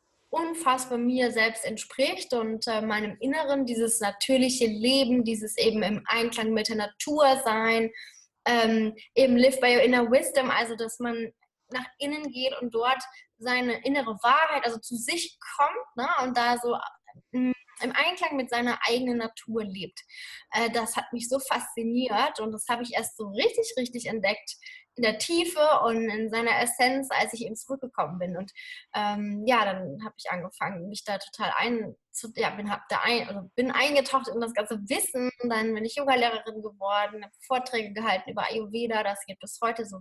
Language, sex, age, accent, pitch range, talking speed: German, female, 10-29, German, 220-265 Hz, 175 wpm